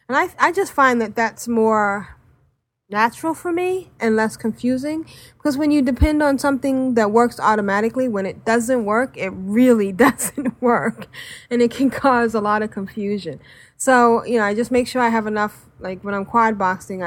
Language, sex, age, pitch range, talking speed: English, female, 20-39, 180-235 Hz, 190 wpm